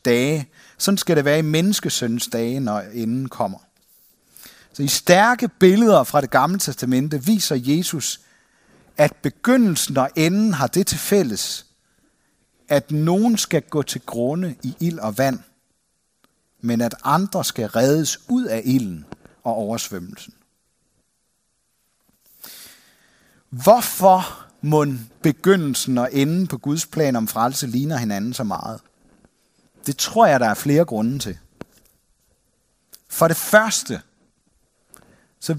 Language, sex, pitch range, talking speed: Danish, male, 120-180 Hz, 125 wpm